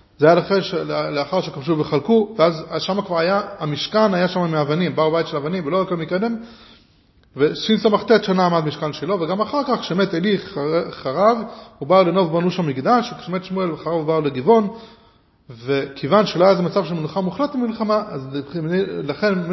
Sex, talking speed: male, 155 wpm